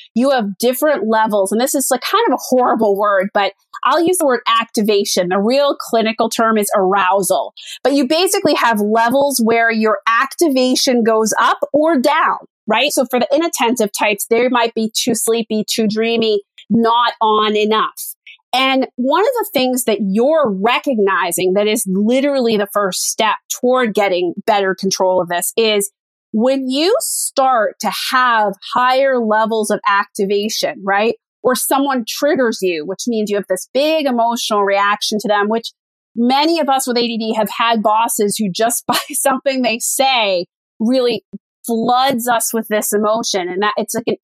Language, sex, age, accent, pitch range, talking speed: English, female, 30-49, American, 210-260 Hz, 170 wpm